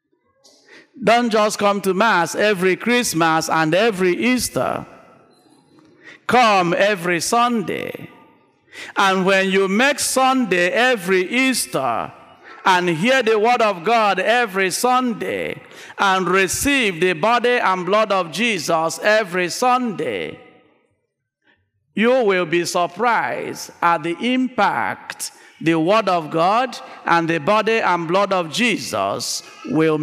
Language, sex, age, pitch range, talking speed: English, male, 50-69, 175-240 Hz, 115 wpm